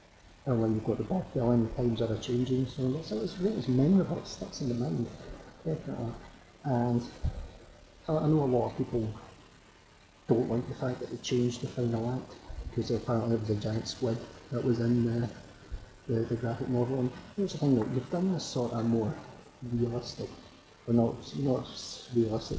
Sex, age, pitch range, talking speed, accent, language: male, 40-59, 110-130 Hz, 175 wpm, British, English